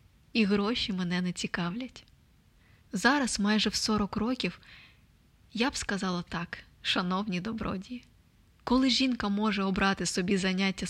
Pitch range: 195-230 Hz